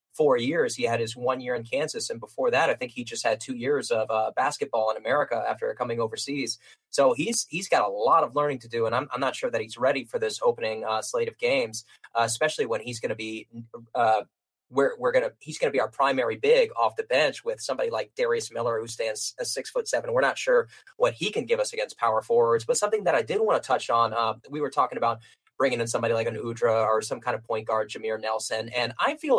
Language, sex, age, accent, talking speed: English, male, 20-39, American, 255 wpm